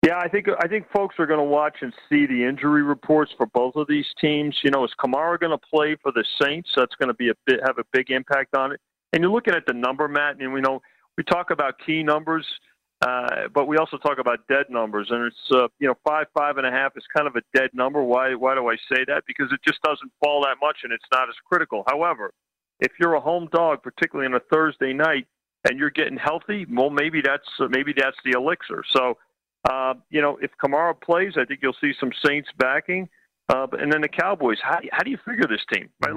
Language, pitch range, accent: English, 130-155 Hz, American